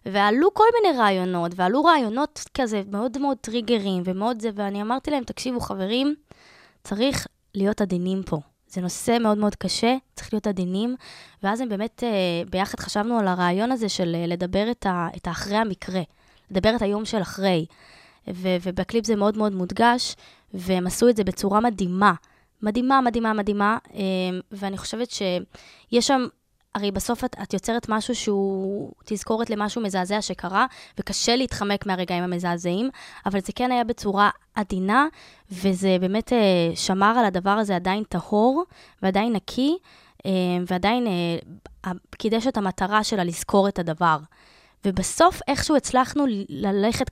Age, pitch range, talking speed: 20-39, 185-235 Hz, 140 wpm